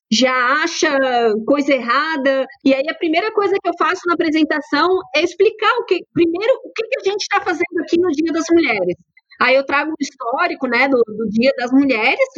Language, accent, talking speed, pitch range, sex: Portuguese, Brazilian, 200 wpm, 275-360 Hz, female